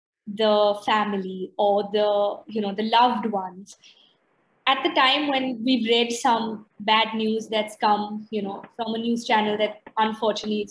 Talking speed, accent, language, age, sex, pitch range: 155 wpm, Indian, English, 20-39, female, 215-290 Hz